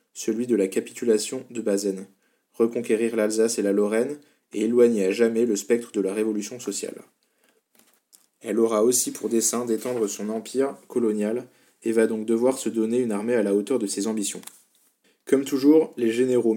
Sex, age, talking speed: male, 20-39, 175 wpm